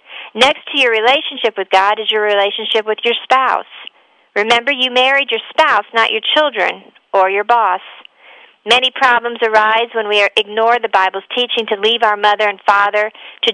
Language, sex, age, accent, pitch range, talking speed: English, female, 50-69, American, 215-260 Hz, 175 wpm